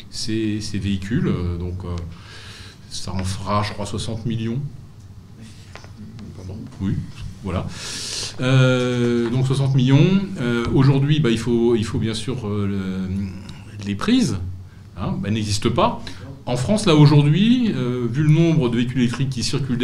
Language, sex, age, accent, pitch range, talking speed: French, male, 40-59, French, 105-145 Hz, 140 wpm